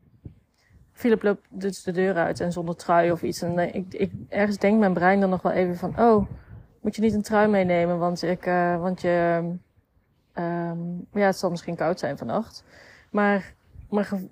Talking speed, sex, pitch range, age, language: 190 wpm, female, 175-210 Hz, 30-49, Dutch